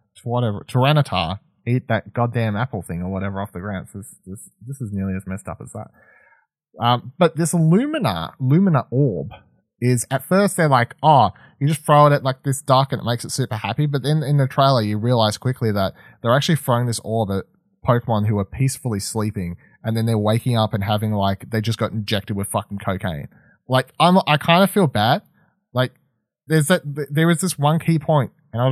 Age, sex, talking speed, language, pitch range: 20-39, male, 215 wpm, English, 110-160 Hz